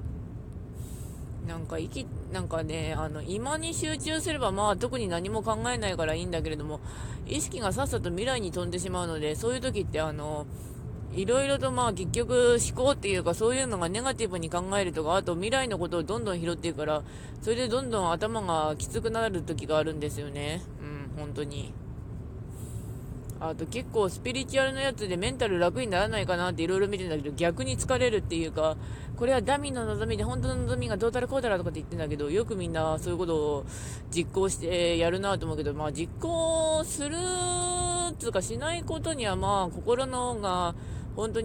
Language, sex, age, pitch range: Japanese, female, 20-39, 130-190 Hz